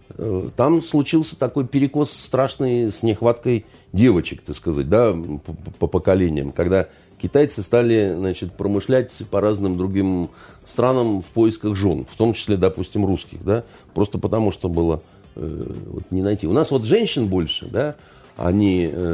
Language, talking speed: Russian, 140 wpm